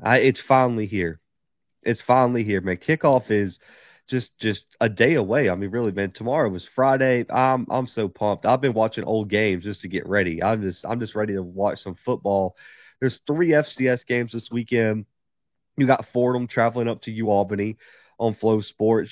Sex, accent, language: male, American, English